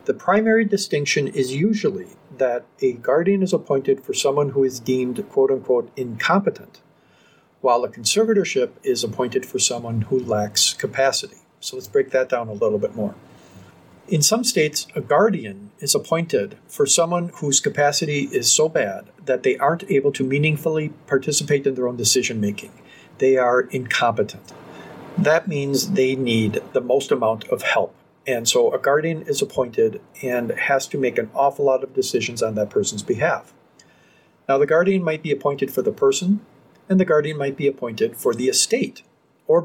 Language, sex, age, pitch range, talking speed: English, male, 50-69, 140-220 Hz, 170 wpm